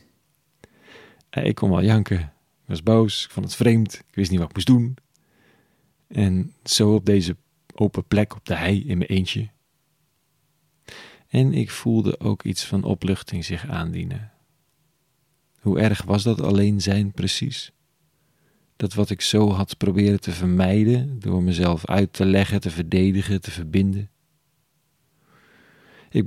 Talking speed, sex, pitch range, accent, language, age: 145 wpm, male, 95-125 Hz, Dutch, Dutch, 40-59